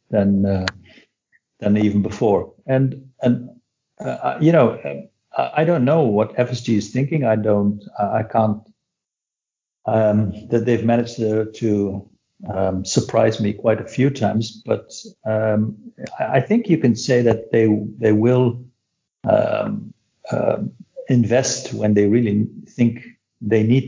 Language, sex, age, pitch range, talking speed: English, male, 60-79, 100-120 Hz, 135 wpm